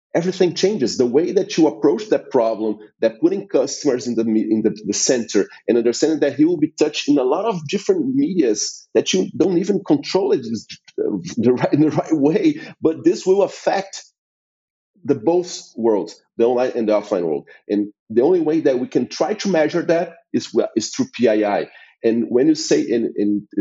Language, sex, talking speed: English, male, 195 wpm